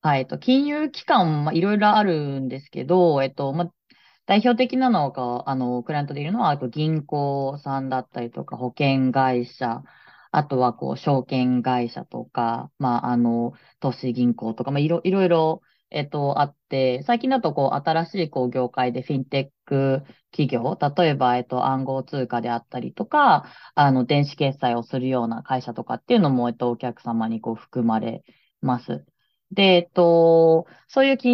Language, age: Japanese, 20-39